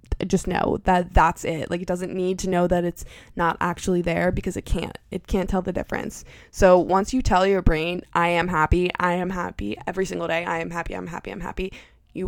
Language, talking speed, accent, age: English, 230 wpm, American, 20-39